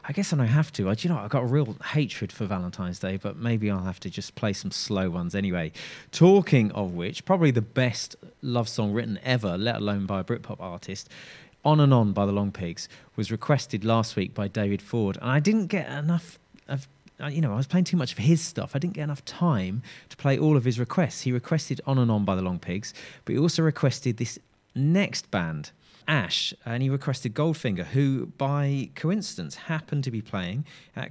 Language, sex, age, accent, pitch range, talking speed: English, male, 30-49, British, 105-150 Hz, 215 wpm